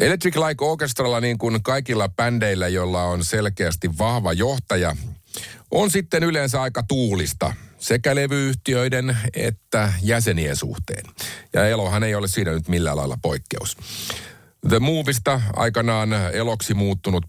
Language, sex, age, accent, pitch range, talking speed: Finnish, male, 50-69, native, 85-115 Hz, 130 wpm